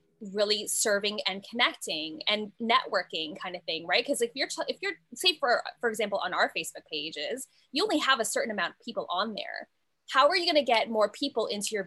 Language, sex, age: English, female, 10-29